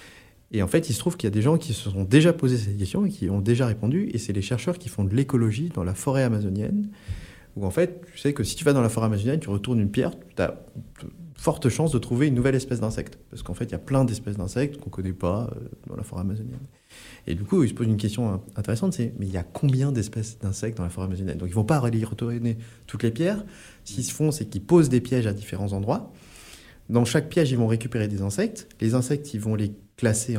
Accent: French